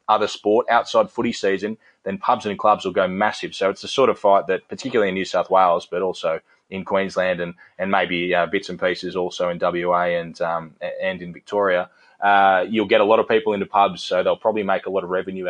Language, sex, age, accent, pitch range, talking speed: English, male, 20-39, Australian, 90-100 Hz, 230 wpm